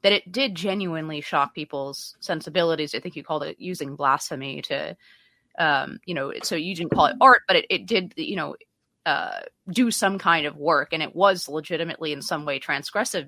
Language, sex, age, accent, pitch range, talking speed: English, female, 30-49, American, 150-185 Hz, 200 wpm